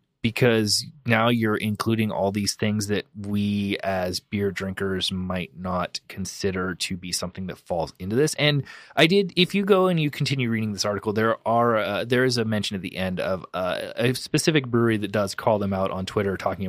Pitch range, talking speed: 95-130 Hz, 205 wpm